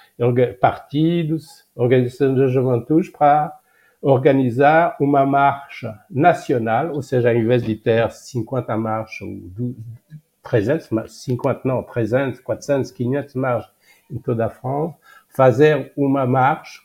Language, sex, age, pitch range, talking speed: Portuguese, male, 60-79, 115-140 Hz, 105 wpm